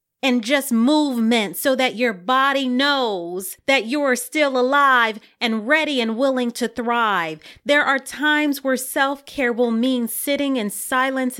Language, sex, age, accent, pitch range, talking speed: English, female, 30-49, American, 200-260 Hz, 155 wpm